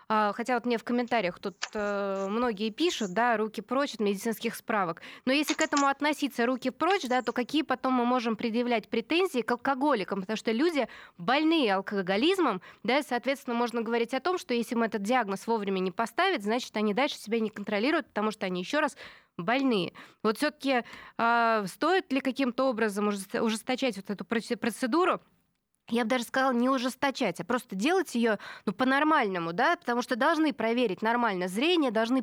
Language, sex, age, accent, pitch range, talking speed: Russian, female, 20-39, native, 210-260 Hz, 180 wpm